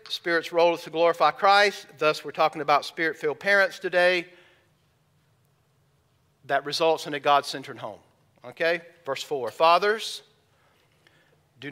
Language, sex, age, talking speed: English, male, 50-69, 135 wpm